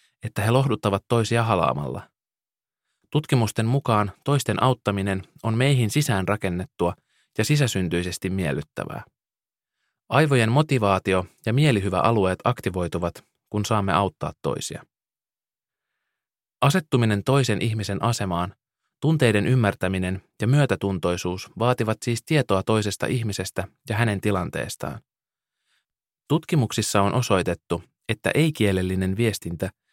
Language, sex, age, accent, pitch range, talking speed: Finnish, male, 20-39, native, 95-120 Hz, 95 wpm